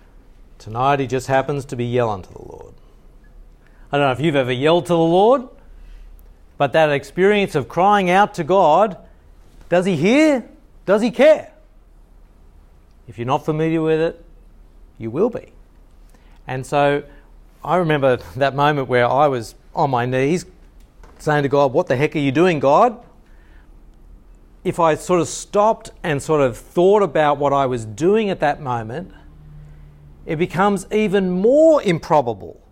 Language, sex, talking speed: English, male, 160 wpm